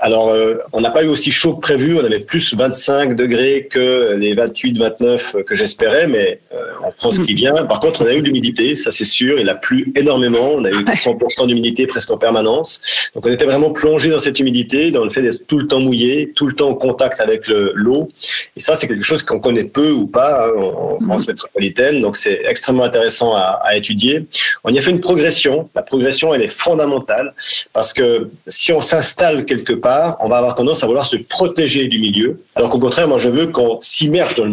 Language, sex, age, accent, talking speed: French, male, 40-59, French, 230 wpm